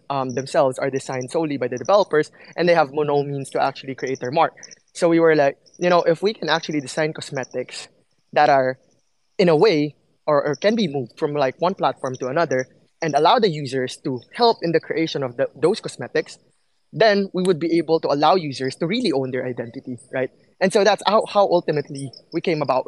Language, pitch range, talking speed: English, 130-160 Hz, 215 wpm